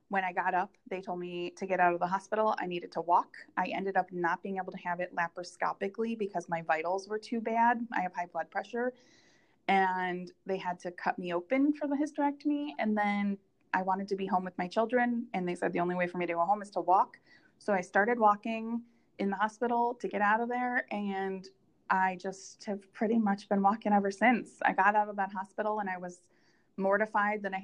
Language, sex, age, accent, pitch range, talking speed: English, female, 20-39, American, 175-210 Hz, 230 wpm